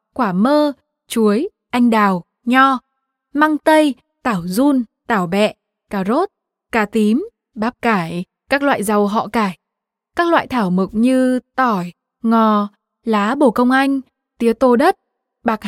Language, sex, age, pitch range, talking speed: Vietnamese, female, 20-39, 205-265 Hz, 145 wpm